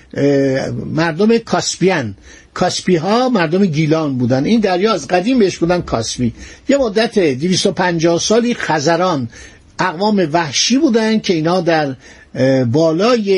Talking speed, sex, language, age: 115 wpm, male, Persian, 60-79